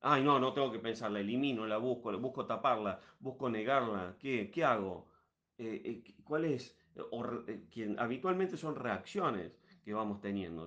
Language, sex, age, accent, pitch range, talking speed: Spanish, male, 40-59, Argentinian, 105-140 Hz, 170 wpm